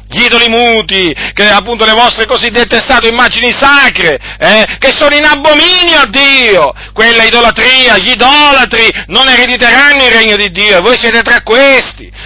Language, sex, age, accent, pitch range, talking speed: Italian, male, 50-69, native, 210-250 Hz, 160 wpm